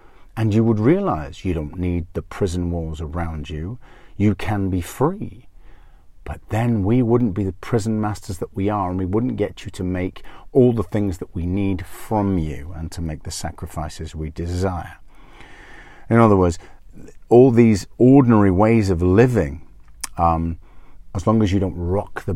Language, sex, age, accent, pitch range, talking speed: English, male, 40-59, British, 85-115 Hz, 175 wpm